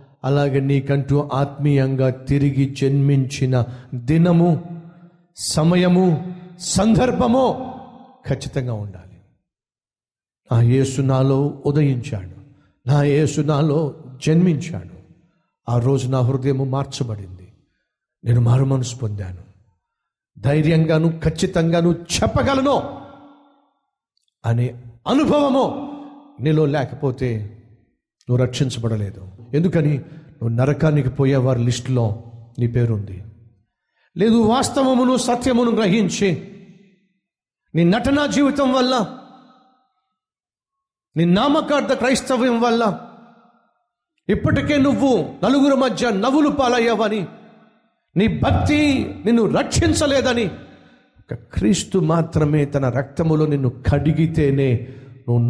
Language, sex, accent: Telugu, male, native